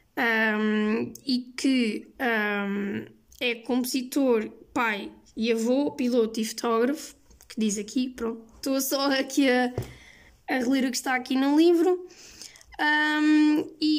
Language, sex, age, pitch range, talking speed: Portuguese, female, 10-29, 230-285 Hz, 130 wpm